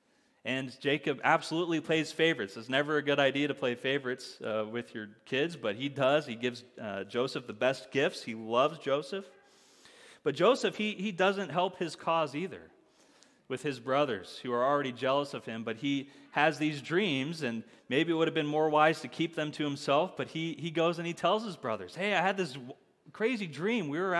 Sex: male